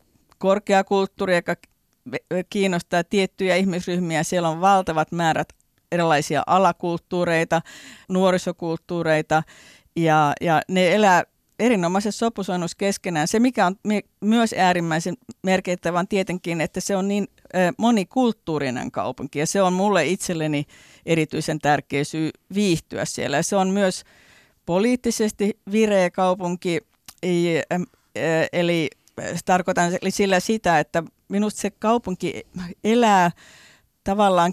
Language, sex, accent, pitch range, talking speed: Finnish, female, native, 160-200 Hz, 100 wpm